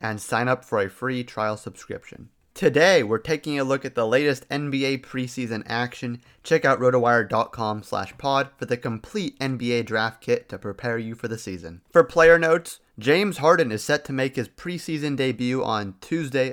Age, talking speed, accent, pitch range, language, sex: 30-49, 180 wpm, American, 115-145 Hz, English, male